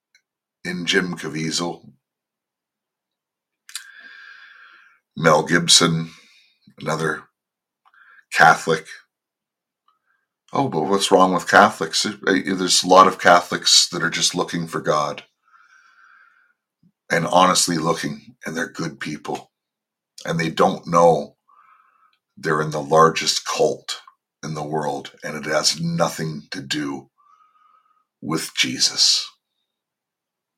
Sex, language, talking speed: male, English, 100 wpm